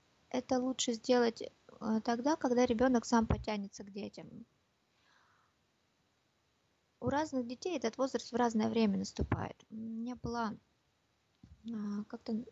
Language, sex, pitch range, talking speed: Russian, female, 205-245 Hz, 110 wpm